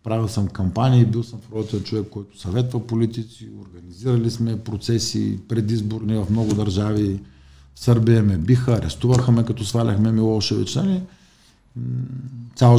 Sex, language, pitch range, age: male, Bulgarian, 100-120 Hz, 50-69